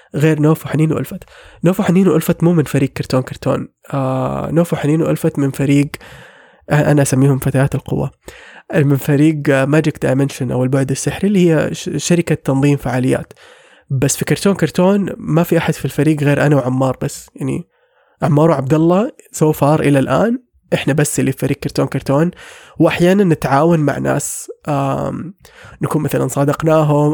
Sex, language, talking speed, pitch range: male, English, 155 wpm, 140-165 Hz